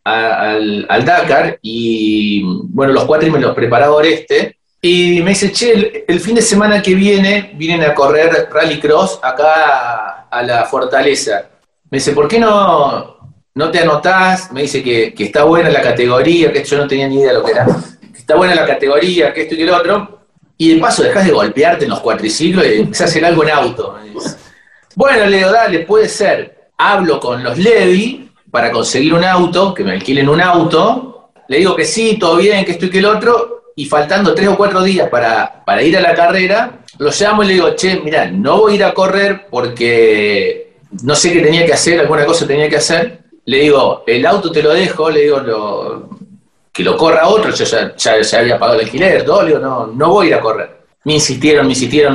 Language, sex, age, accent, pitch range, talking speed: Spanish, male, 30-49, Argentinian, 135-195 Hz, 220 wpm